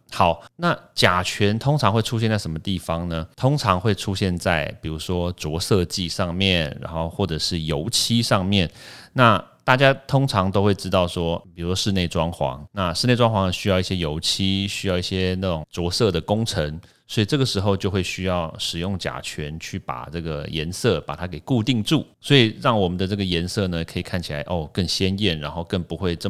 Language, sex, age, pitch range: Chinese, male, 30-49, 85-100 Hz